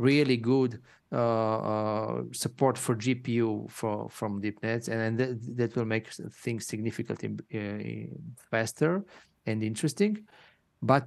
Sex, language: male, English